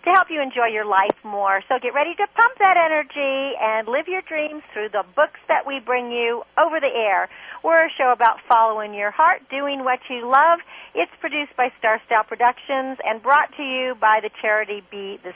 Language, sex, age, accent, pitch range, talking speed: English, female, 50-69, American, 230-300 Hz, 210 wpm